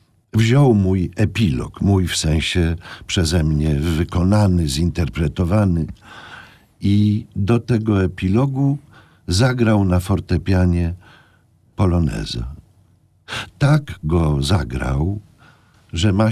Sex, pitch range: male, 90-110 Hz